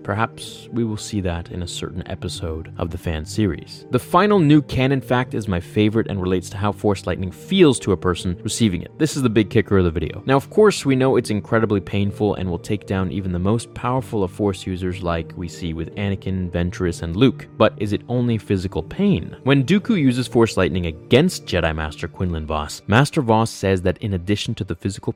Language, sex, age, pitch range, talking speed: English, male, 20-39, 95-120 Hz, 220 wpm